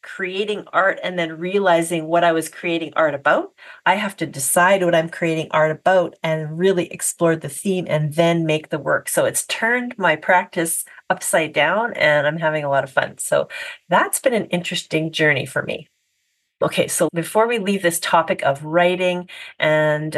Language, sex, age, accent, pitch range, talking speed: English, female, 40-59, American, 165-205 Hz, 185 wpm